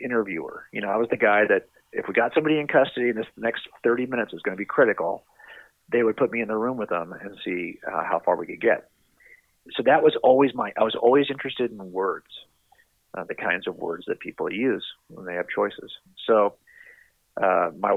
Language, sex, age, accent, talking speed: English, male, 40-59, American, 225 wpm